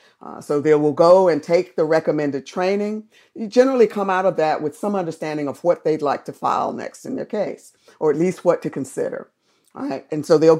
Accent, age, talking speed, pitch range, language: American, 50-69, 215 wpm, 150-190 Hz, English